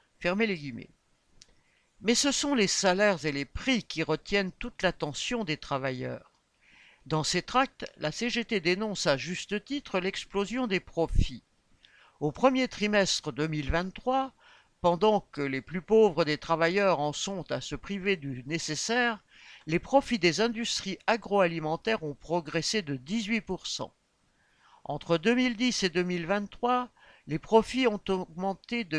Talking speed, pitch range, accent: 135 wpm, 155-210 Hz, French